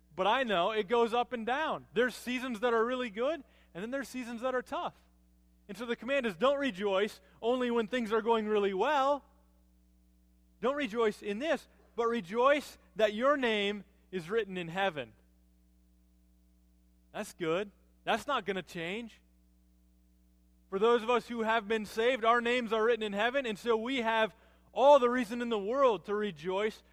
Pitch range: 150-235 Hz